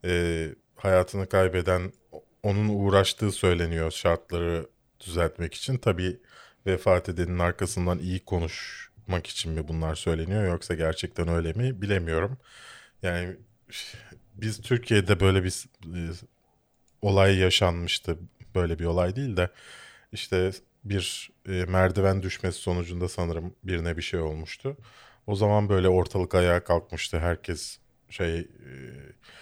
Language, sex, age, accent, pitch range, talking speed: Turkish, male, 30-49, native, 85-105 Hz, 115 wpm